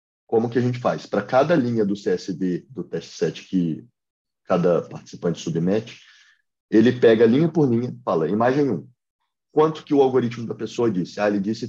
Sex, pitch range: male, 105-130 Hz